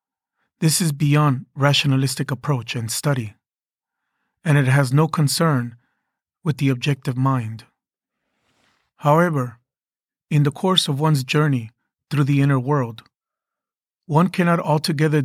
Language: English